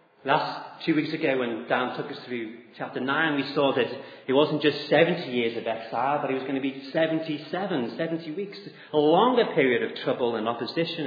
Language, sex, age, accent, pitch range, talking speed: English, male, 30-49, British, 115-155 Hz, 200 wpm